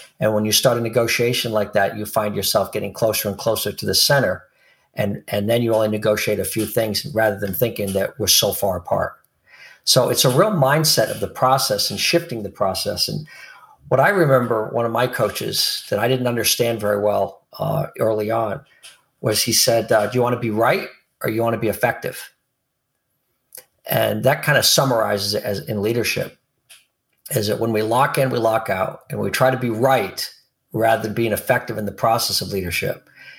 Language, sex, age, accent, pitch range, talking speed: English, male, 50-69, American, 105-125 Hz, 205 wpm